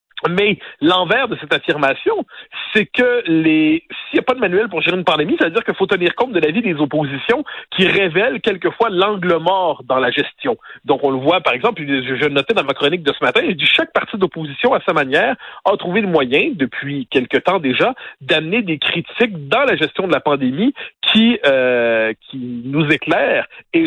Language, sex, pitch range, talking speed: French, male, 150-225 Hz, 210 wpm